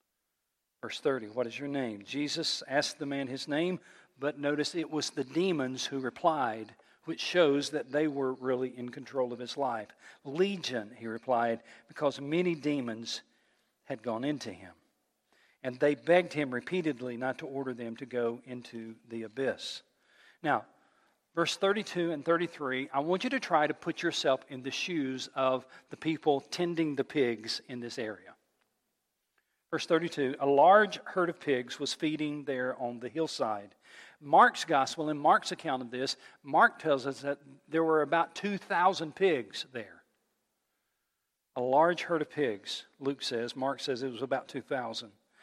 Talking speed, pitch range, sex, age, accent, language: 160 wpm, 130-165 Hz, male, 40-59, American, English